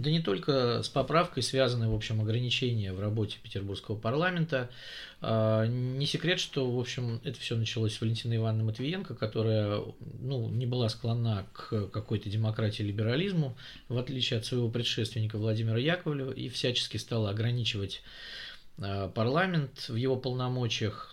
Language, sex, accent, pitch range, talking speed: Russian, male, native, 110-135 Hz, 140 wpm